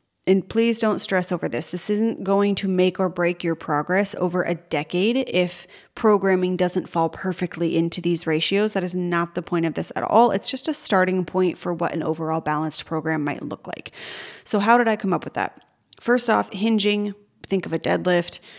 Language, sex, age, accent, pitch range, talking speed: English, female, 30-49, American, 170-205 Hz, 205 wpm